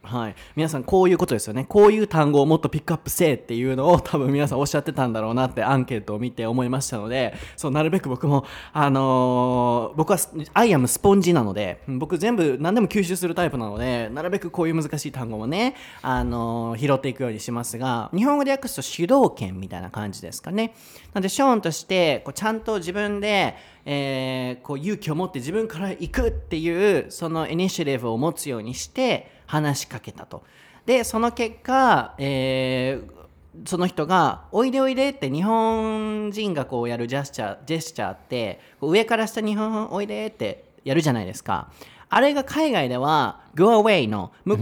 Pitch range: 125-205 Hz